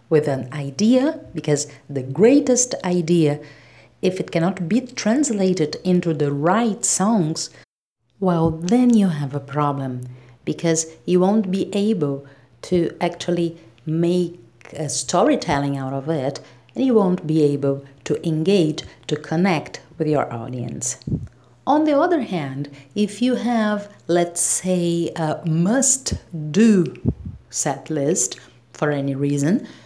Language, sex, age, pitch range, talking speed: English, female, 50-69, 145-195 Hz, 125 wpm